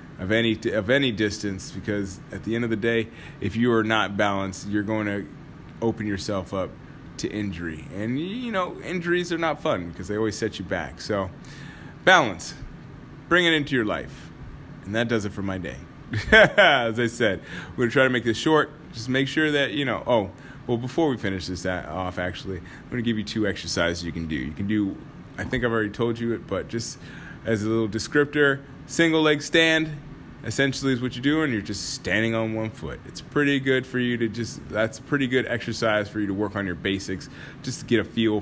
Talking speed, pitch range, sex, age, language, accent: 215 wpm, 95-135 Hz, male, 20-39, English, American